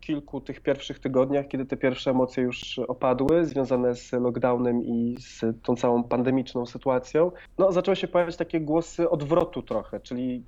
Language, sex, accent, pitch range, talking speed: Polish, male, native, 120-145 Hz, 160 wpm